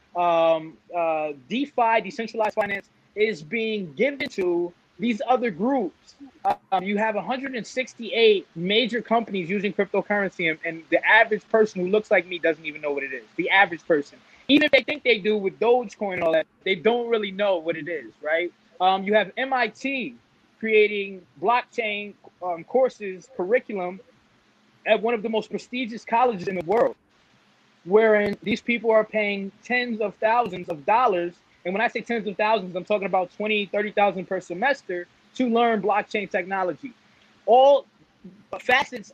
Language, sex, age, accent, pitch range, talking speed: English, male, 20-39, American, 190-235 Hz, 165 wpm